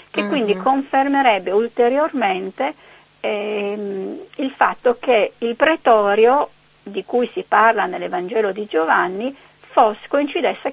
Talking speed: 105 wpm